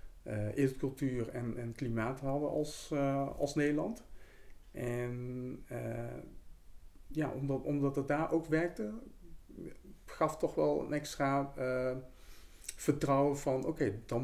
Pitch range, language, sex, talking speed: 115-140 Hz, Dutch, male, 125 wpm